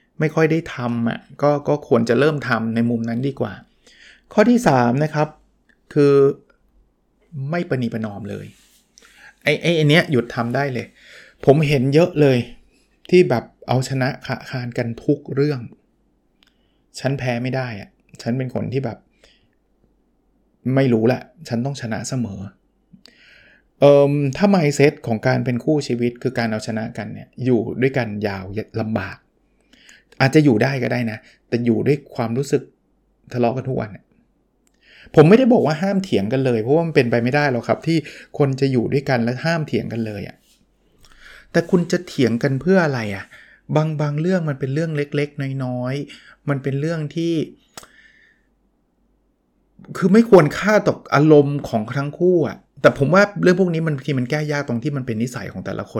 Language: Thai